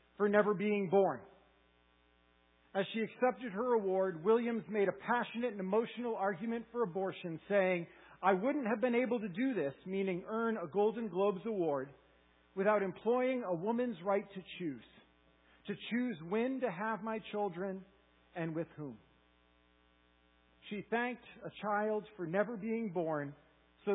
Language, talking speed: English, 150 wpm